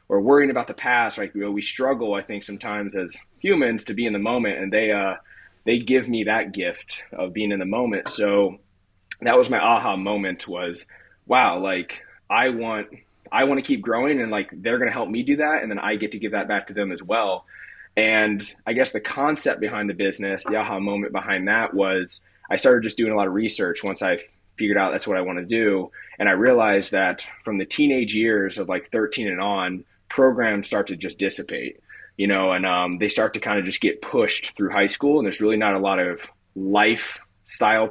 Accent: American